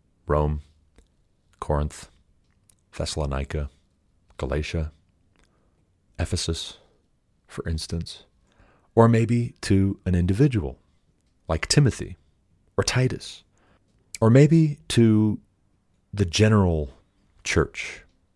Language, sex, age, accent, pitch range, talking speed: English, male, 40-59, American, 80-100 Hz, 70 wpm